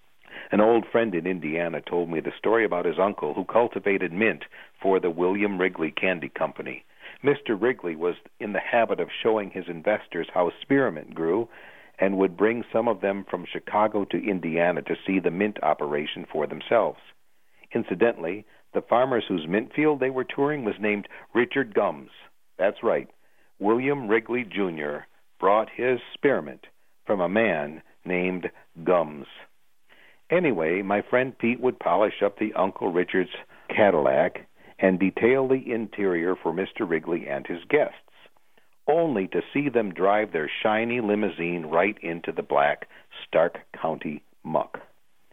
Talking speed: 150 wpm